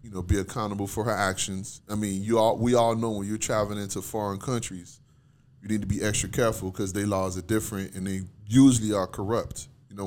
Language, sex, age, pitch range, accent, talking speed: English, male, 20-39, 100-120 Hz, American, 225 wpm